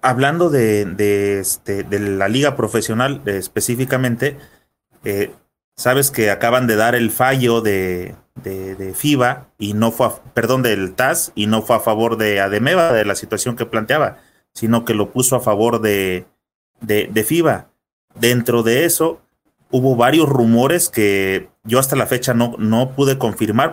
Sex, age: male, 30-49